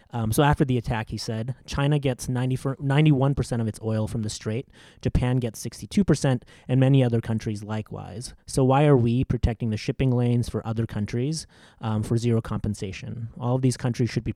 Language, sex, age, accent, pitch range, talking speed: English, male, 30-49, American, 105-125 Hz, 190 wpm